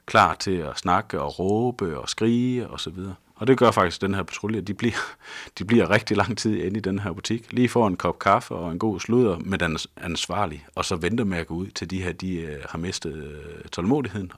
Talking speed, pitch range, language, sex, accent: 235 wpm, 80-105 Hz, Danish, male, native